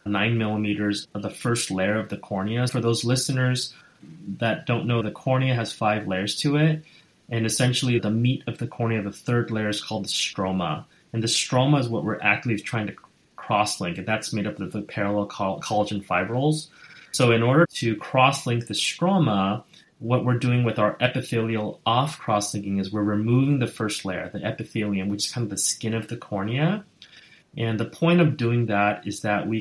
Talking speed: 195 wpm